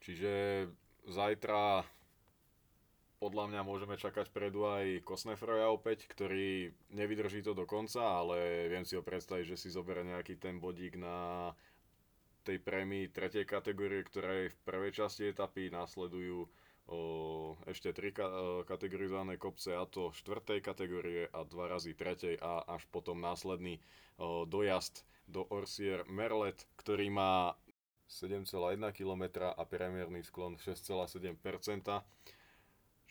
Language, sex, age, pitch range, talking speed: Slovak, male, 20-39, 85-100 Hz, 120 wpm